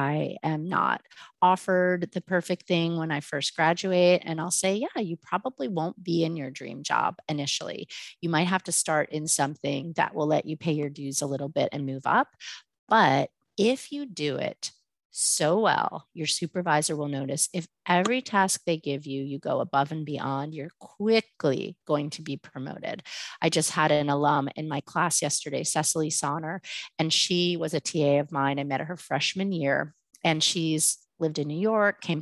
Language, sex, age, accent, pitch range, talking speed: English, female, 30-49, American, 145-180 Hz, 190 wpm